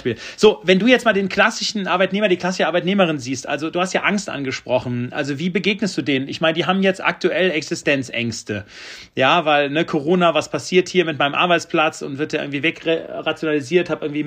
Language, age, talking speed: German, 40-59, 200 wpm